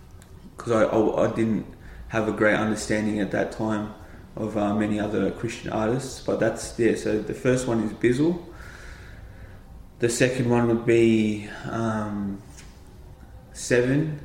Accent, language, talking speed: Australian, English, 145 wpm